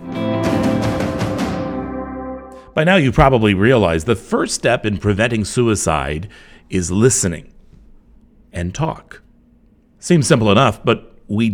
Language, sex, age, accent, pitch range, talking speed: English, male, 60-79, American, 95-160 Hz, 105 wpm